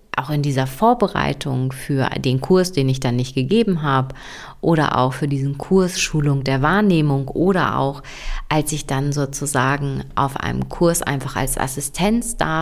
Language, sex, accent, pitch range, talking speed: German, female, German, 145-200 Hz, 160 wpm